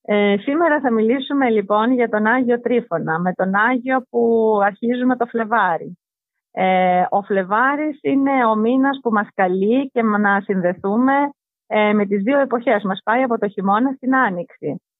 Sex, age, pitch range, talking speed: female, 30-49, 185-245 Hz, 160 wpm